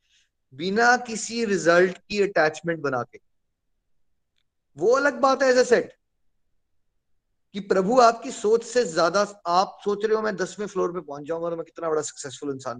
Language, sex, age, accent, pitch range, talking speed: Hindi, male, 30-49, native, 150-205 Hz, 160 wpm